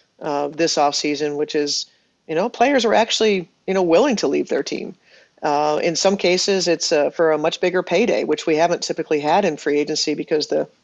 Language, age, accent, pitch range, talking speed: English, 40-59, American, 150-170 Hz, 210 wpm